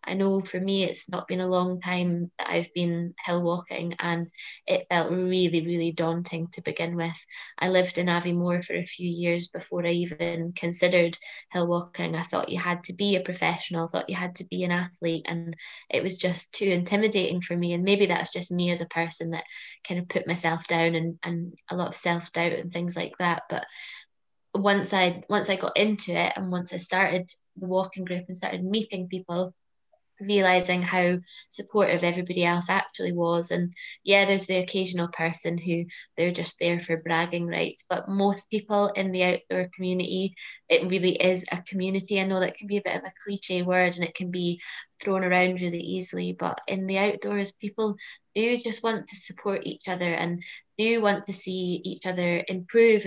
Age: 20-39